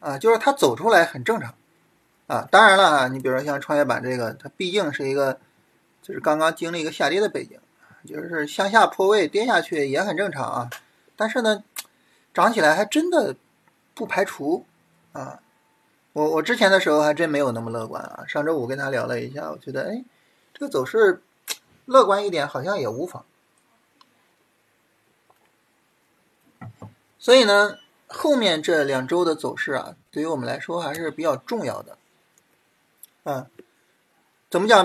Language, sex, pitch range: Chinese, male, 140-210 Hz